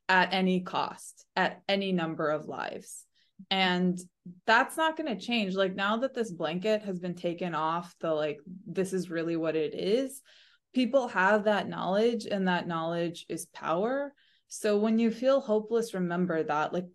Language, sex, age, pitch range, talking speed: English, female, 20-39, 160-195 Hz, 165 wpm